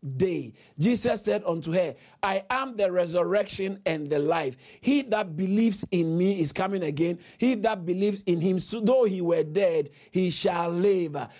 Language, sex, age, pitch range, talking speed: English, male, 50-69, 160-215 Hz, 170 wpm